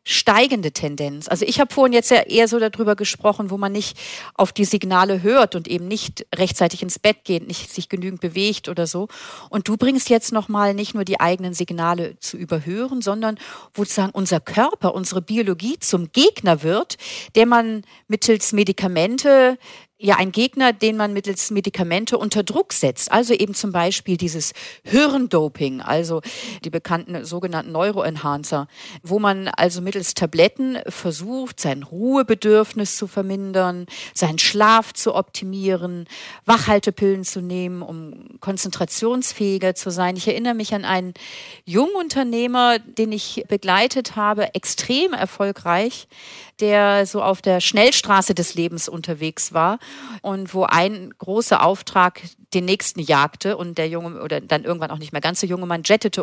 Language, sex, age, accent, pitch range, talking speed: German, female, 40-59, German, 175-220 Hz, 150 wpm